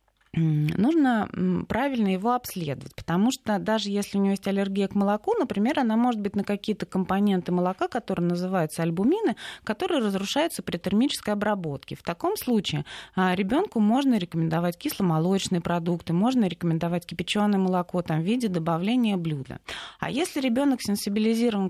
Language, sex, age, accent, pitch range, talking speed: Russian, female, 20-39, native, 170-235 Hz, 140 wpm